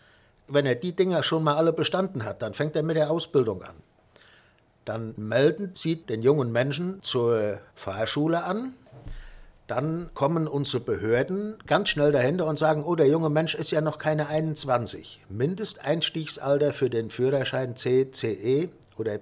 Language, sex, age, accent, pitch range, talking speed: German, male, 60-79, German, 125-160 Hz, 155 wpm